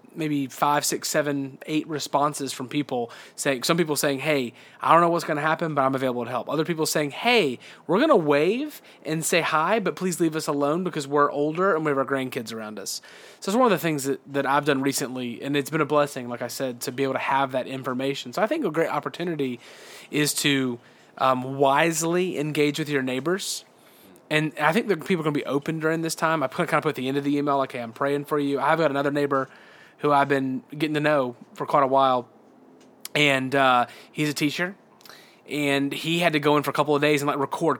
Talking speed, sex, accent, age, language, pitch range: 245 wpm, male, American, 30-49, English, 135-160 Hz